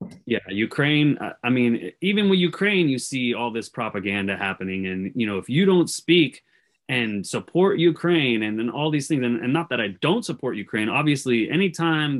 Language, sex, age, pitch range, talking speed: English, male, 30-49, 120-155 Hz, 185 wpm